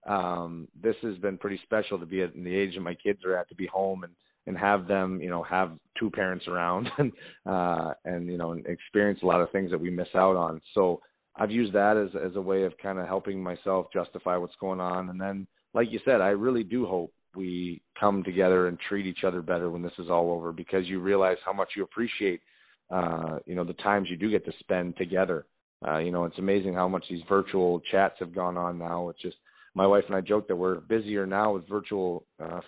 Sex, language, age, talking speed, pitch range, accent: male, English, 30-49, 240 wpm, 90-100 Hz, American